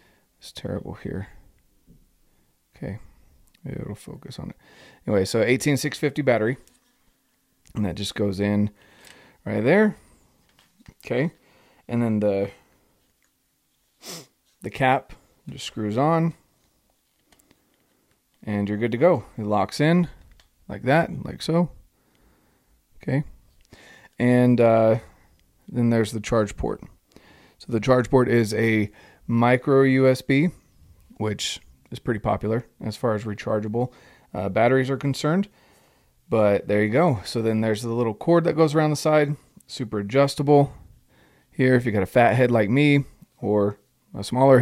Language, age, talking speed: English, 30-49, 130 wpm